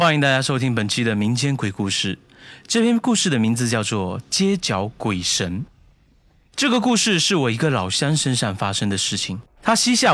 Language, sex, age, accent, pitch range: Chinese, male, 30-49, native, 110-175 Hz